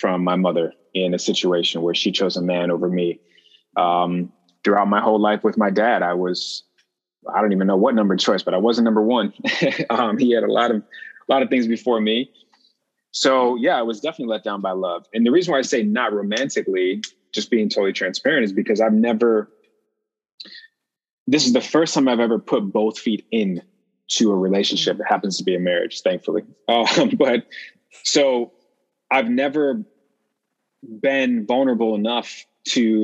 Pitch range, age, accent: 100-130 Hz, 20-39, American